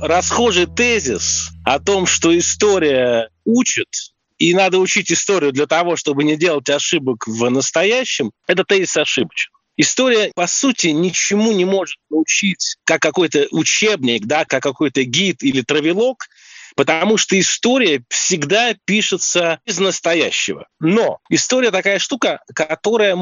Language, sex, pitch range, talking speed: Russian, male, 155-215 Hz, 130 wpm